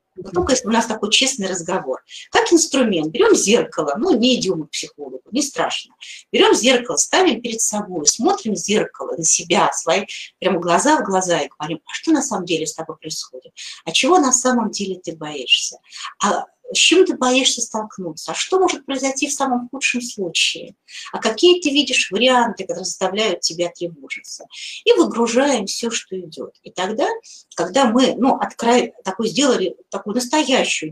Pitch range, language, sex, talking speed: 185-270 Hz, Russian, female, 170 wpm